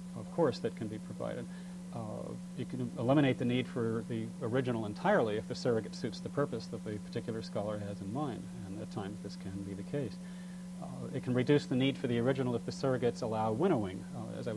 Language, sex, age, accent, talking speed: English, male, 40-59, American, 225 wpm